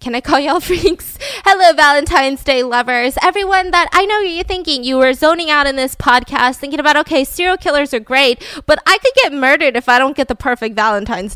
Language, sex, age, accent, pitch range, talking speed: English, female, 20-39, American, 230-305 Hz, 215 wpm